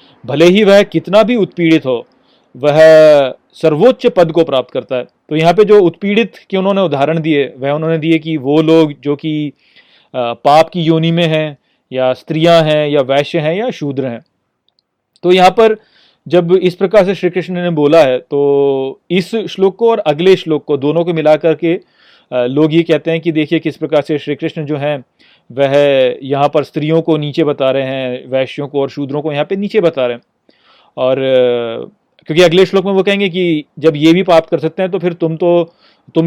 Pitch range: 145-185 Hz